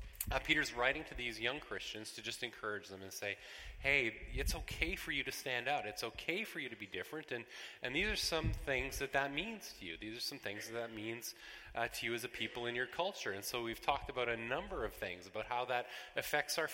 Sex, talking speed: male, 245 wpm